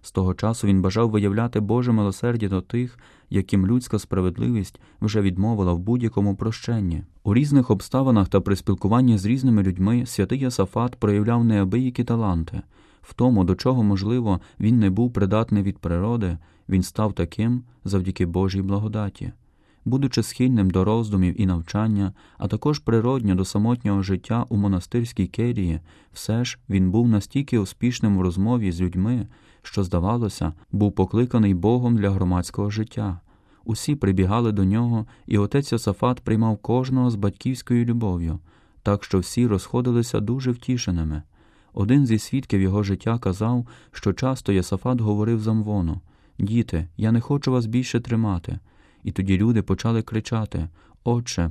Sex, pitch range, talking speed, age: male, 95-120 Hz, 145 wpm, 20-39